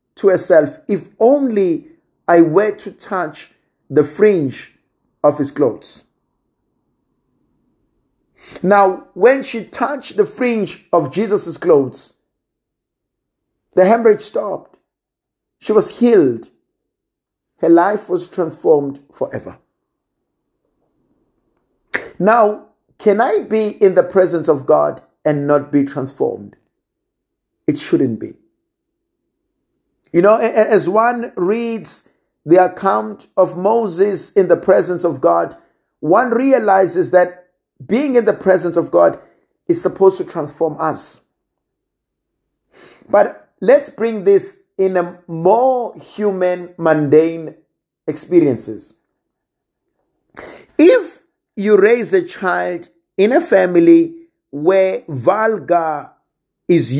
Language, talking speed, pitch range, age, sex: English, 105 wpm, 170-250 Hz, 50-69, male